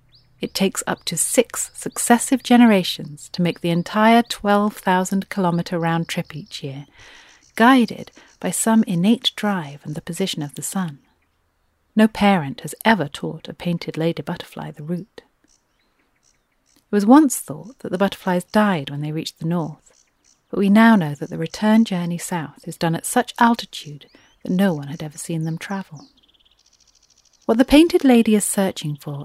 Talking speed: 160 wpm